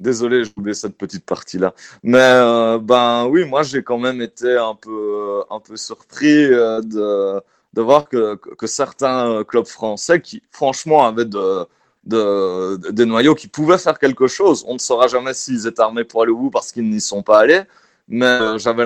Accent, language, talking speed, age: French, French, 190 wpm, 30-49